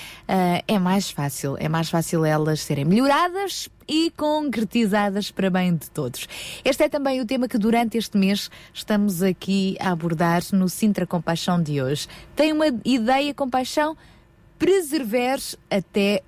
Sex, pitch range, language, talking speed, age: female, 180-225 Hz, Portuguese, 145 wpm, 20-39